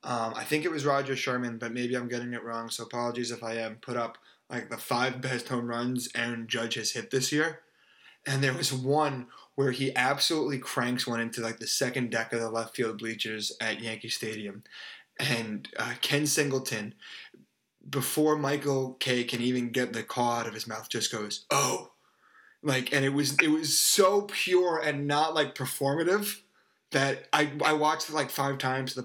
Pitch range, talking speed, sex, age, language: 115-135 Hz, 195 wpm, male, 20-39, English